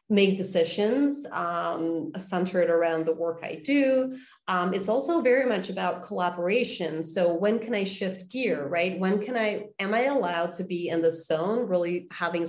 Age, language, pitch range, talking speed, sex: 30-49, English, 165-195 Hz, 175 wpm, female